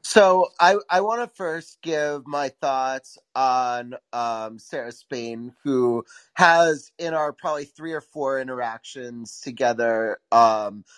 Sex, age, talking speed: male, 30-49, 130 wpm